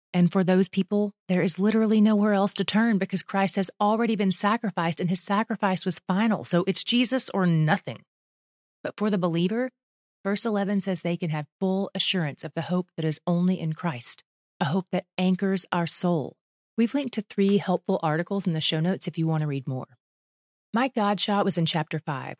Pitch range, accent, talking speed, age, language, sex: 165-200 Hz, American, 200 wpm, 30-49, English, female